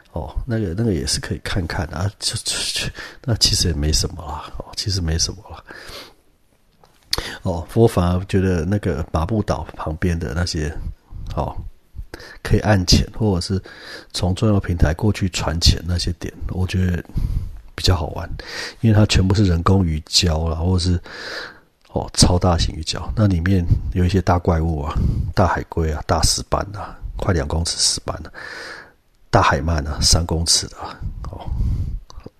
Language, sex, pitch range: Chinese, male, 80-95 Hz